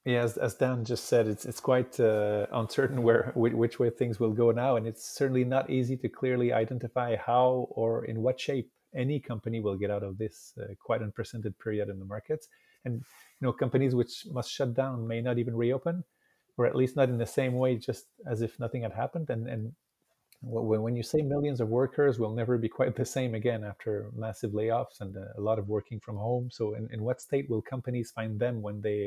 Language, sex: English, male